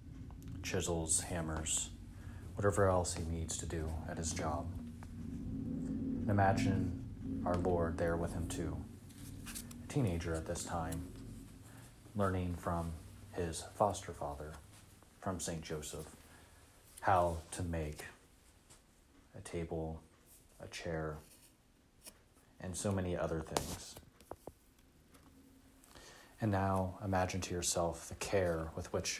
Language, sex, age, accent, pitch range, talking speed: English, male, 30-49, American, 80-95 Hz, 110 wpm